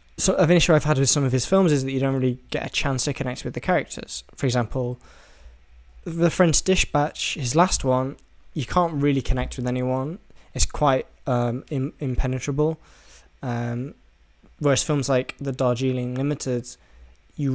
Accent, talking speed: British, 175 wpm